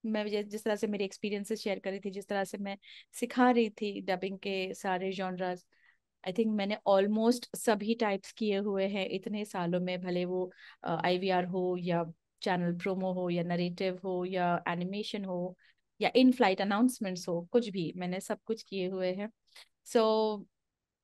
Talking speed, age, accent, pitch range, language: 110 wpm, 30-49, Indian, 190-255 Hz, English